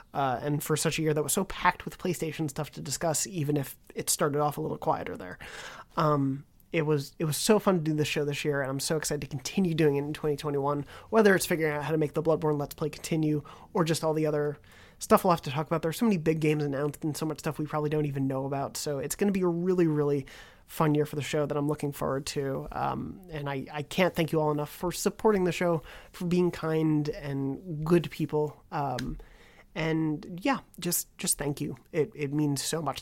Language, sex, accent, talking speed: English, male, American, 245 wpm